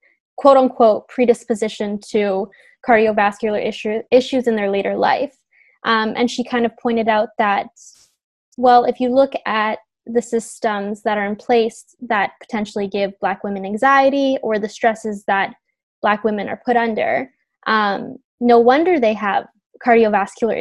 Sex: female